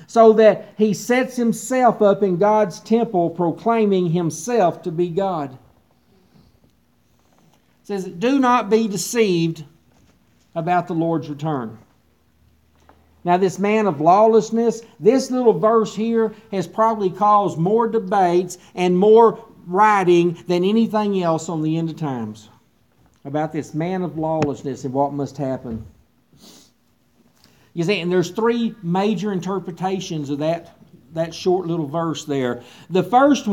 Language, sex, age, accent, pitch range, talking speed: English, male, 50-69, American, 165-215 Hz, 130 wpm